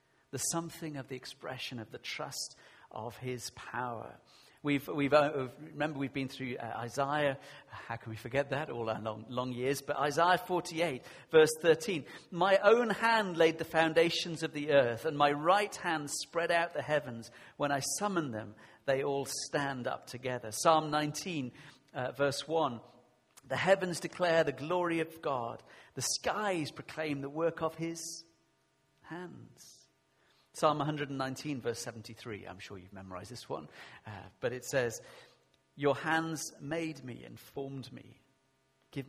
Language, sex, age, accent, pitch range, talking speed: English, male, 50-69, British, 125-165 Hz, 155 wpm